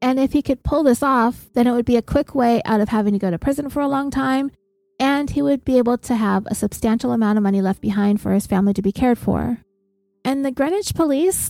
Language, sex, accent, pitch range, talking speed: English, female, American, 205-245 Hz, 260 wpm